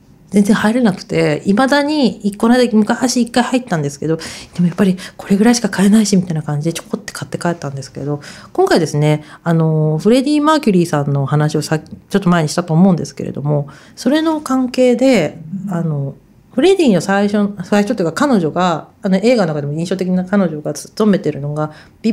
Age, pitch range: 40-59, 155-215 Hz